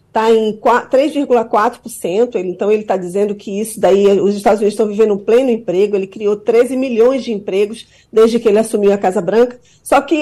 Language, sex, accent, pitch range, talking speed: Portuguese, female, Brazilian, 225-280 Hz, 195 wpm